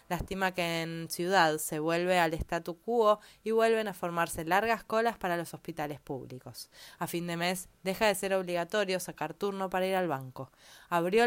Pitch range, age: 170-210 Hz, 20-39